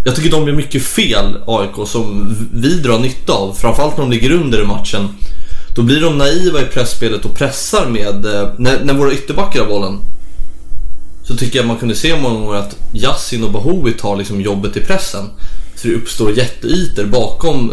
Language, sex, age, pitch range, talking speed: English, male, 20-39, 100-125 Hz, 185 wpm